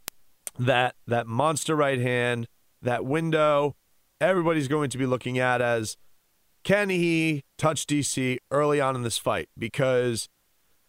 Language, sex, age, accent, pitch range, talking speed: English, male, 30-49, American, 120-165 Hz, 130 wpm